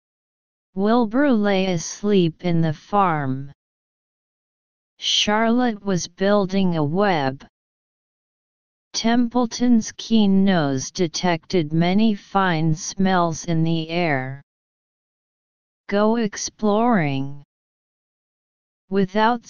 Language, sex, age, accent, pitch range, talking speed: English, female, 30-49, American, 160-205 Hz, 75 wpm